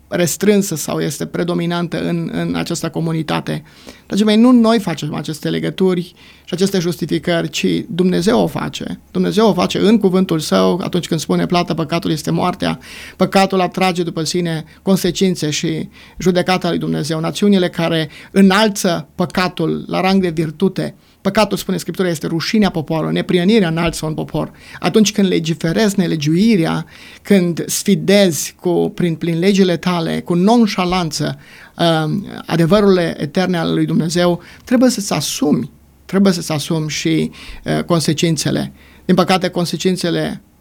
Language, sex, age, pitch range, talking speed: Romanian, male, 30-49, 160-190 Hz, 135 wpm